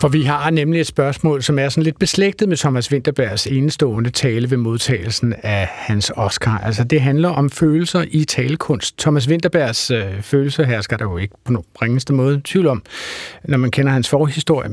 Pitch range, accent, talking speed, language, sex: 125-160 Hz, native, 190 wpm, Danish, male